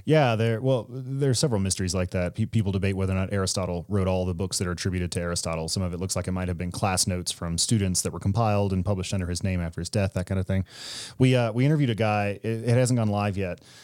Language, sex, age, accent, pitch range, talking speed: English, male, 30-49, American, 95-115 Hz, 280 wpm